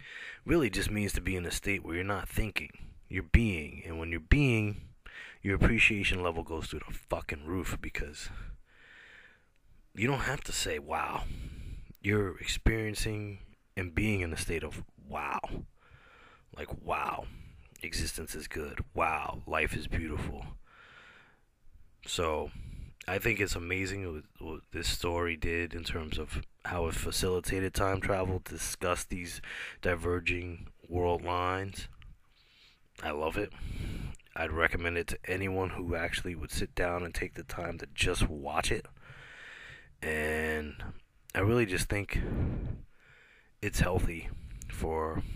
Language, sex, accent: English, male, American